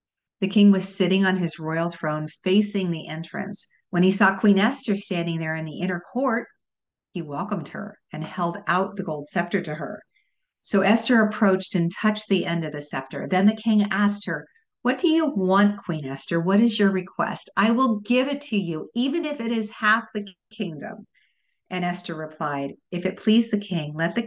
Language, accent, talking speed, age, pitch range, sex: English, American, 200 wpm, 50-69, 175-220 Hz, female